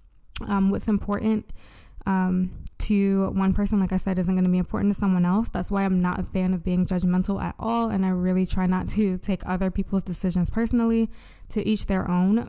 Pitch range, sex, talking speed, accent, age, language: 185-210 Hz, female, 210 wpm, American, 20-39, English